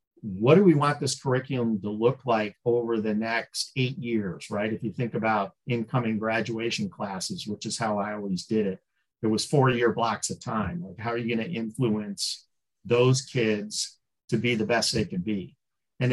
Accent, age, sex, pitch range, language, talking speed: American, 50-69, male, 115-150 Hz, English, 195 wpm